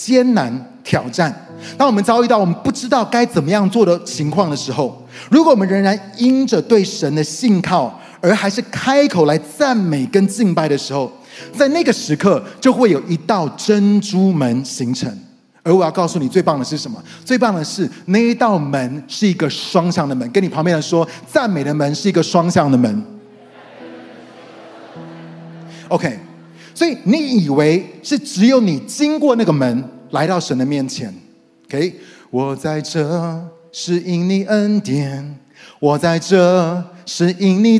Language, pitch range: Chinese, 150-215 Hz